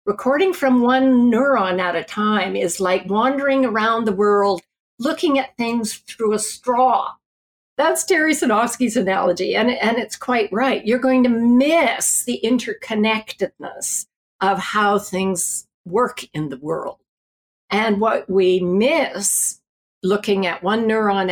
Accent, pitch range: American, 190-245 Hz